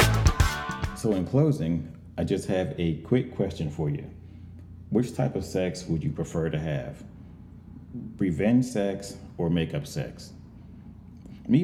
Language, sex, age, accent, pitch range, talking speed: English, male, 30-49, American, 85-110 Hz, 135 wpm